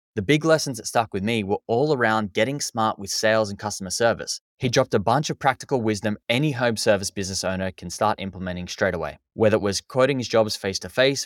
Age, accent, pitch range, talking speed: 10-29, Australian, 100-120 Hz, 230 wpm